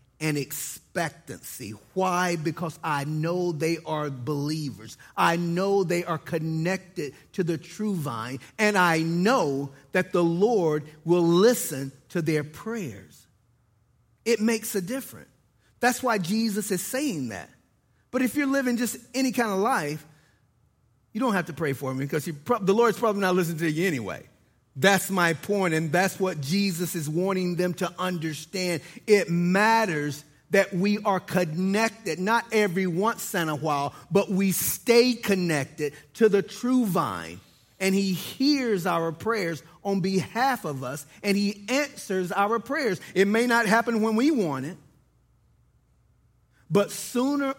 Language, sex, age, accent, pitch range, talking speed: English, male, 40-59, American, 145-200 Hz, 150 wpm